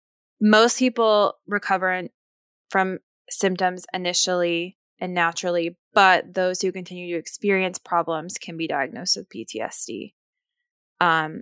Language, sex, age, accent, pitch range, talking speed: English, female, 20-39, American, 175-195 Hz, 110 wpm